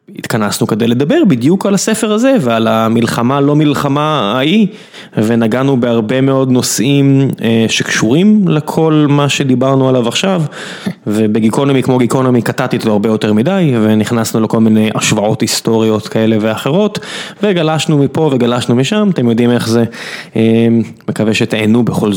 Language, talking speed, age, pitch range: Hebrew, 135 wpm, 20-39, 115-160 Hz